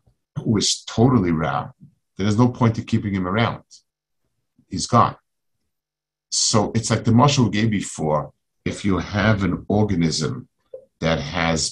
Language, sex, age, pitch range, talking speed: English, male, 50-69, 85-115 Hz, 140 wpm